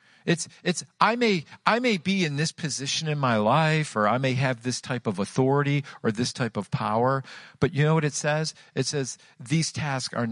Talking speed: 215 wpm